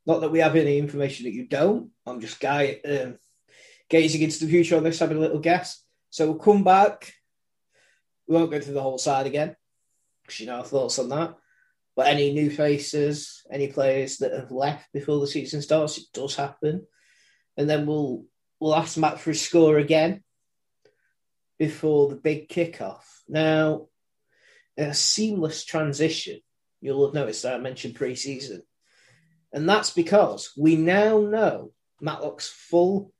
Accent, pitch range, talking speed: British, 140-180 Hz, 165 wpm